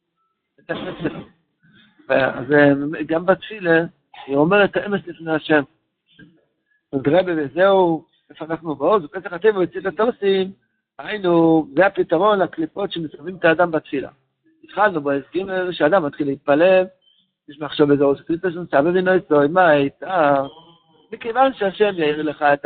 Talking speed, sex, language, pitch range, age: 105 wpm, male, Hebrew, 150-200 Hz, 60-79